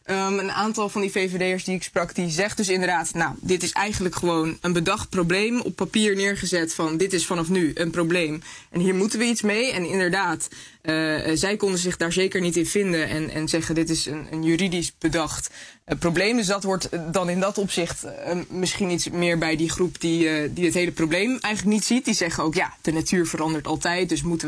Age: 20-39